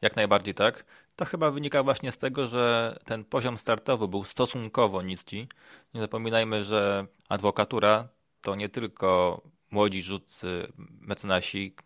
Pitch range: 95-115 Hz